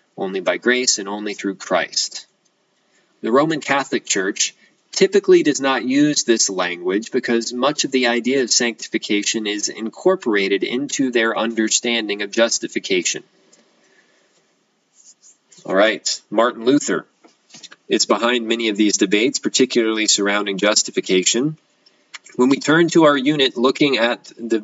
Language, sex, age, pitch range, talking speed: English, male, 20-39, 110-135 Hz, 130 wpm